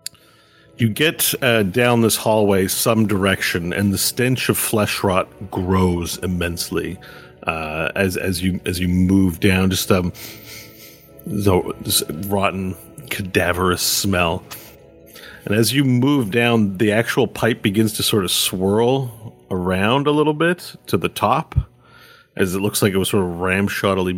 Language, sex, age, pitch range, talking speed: English, male, 40-59, 95-115 Hz, 145 wpm